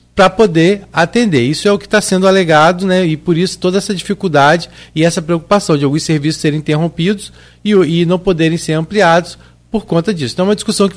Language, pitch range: Portuguese, 140-180 Hz